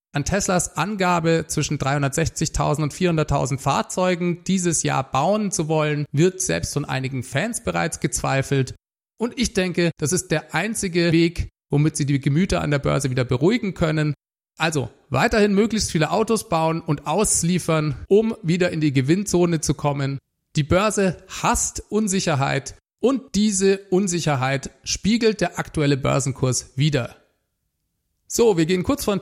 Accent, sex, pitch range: German, male, 145-185 Hz